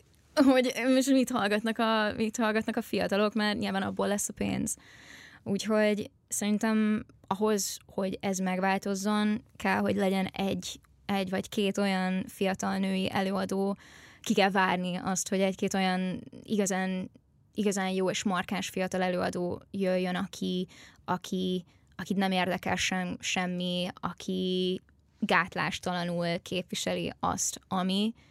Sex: female